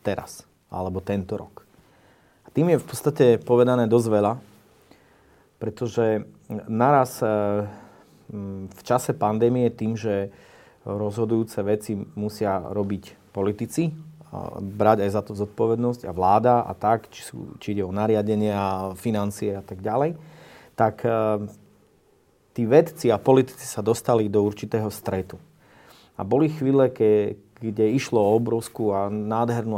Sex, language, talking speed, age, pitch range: male, Slovak, 135 wpm, 30-49, 105-125 Hz